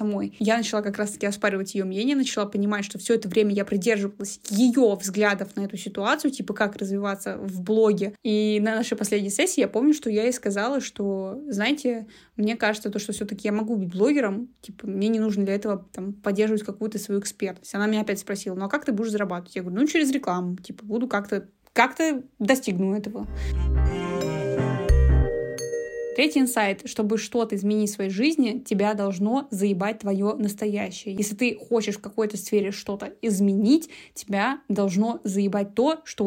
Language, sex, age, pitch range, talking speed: Russian, female, 20-39, 200-230 Hz, 170 wpm